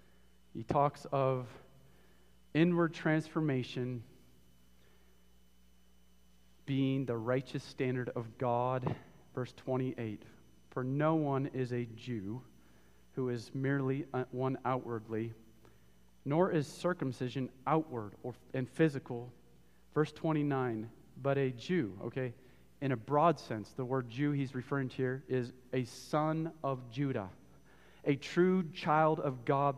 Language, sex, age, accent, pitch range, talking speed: English, male, 40-59, American, 115-165 Hz, 115 wpm